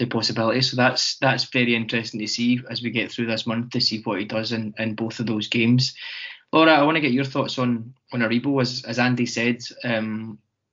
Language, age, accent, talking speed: English, 20-39, British, 230 wpm